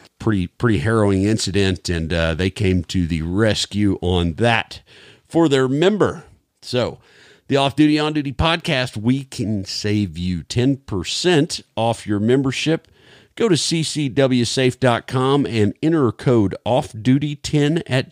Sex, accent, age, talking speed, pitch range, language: male, American, 50-69, 135 wpm, 100-135 Hz, English